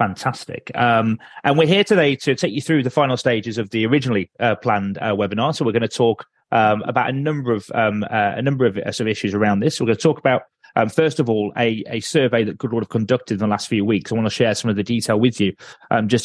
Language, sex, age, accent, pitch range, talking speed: English, male, 30-49, British, 105-130 Hz, 275 wpm